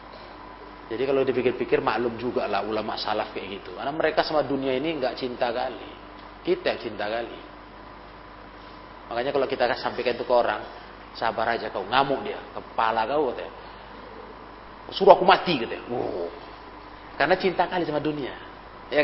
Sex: male